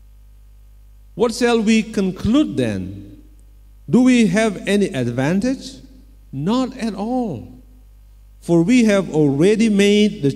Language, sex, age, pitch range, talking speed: Indonesian, male, 50-69, 135-205 Hz, 110 wpm